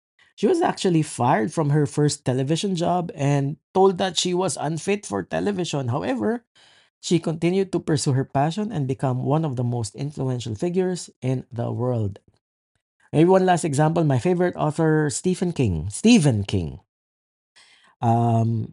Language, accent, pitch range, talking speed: English, Filipino, 130-175 Hz, 150 wpm